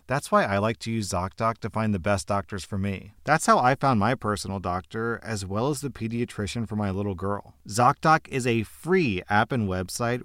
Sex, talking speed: male, 215 wpm